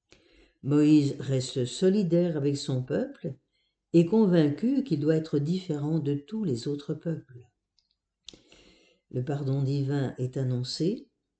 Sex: female